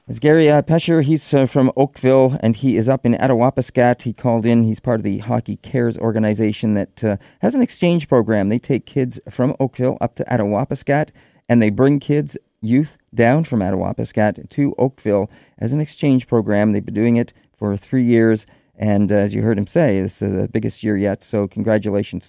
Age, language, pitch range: 40-59, English, 105-140 Hz